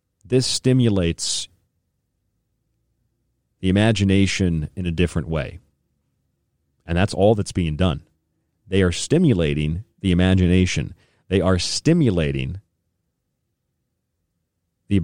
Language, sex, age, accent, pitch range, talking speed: English, male, 40-59, American, 85-110 Hz, 90 wpm